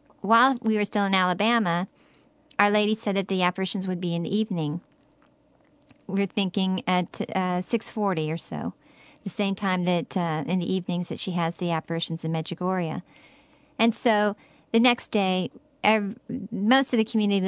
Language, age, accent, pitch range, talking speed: English, 40-59, American, 180-225 Hz, 170 wpm